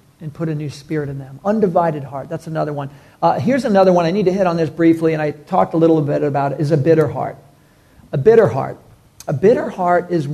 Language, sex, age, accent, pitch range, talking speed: English, male, 50-69, American, 145-175 Hz, 245 wpm